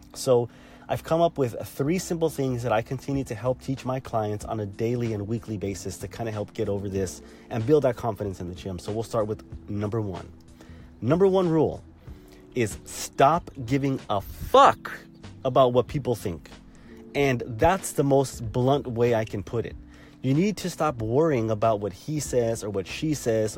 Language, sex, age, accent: English, male, 30-49, American